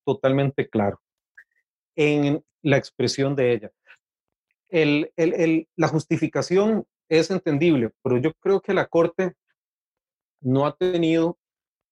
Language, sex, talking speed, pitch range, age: Spanish, male, 115 wpm, 125-165 Hz, 30-49